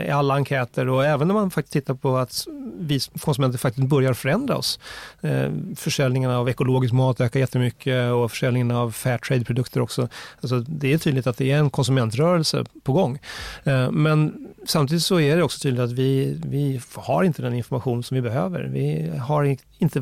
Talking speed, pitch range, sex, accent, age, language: 180 wpm, 130-155 Hz, male, native, 30-49, Swedish